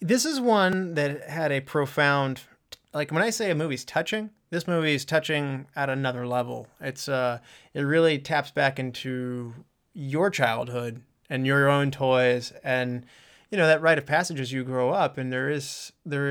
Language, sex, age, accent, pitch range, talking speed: English, male, 30-49, American, 125-155 Hz, 180 wpm